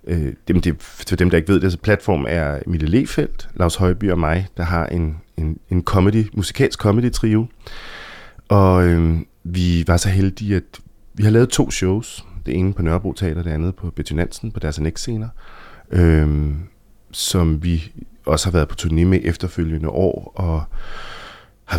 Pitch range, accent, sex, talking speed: 85-100 Hz, native, male, 170 wpm